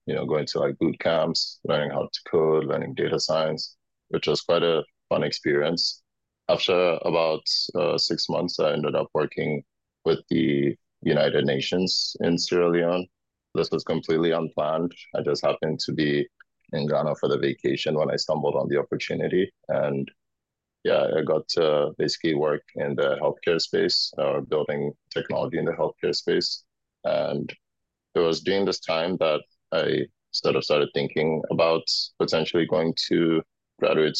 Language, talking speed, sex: English, 160 wpm, male